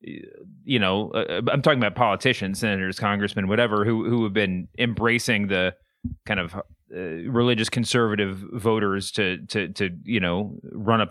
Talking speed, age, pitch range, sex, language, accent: 155 wpm, 30-49, 110-150 Hz, male, English, American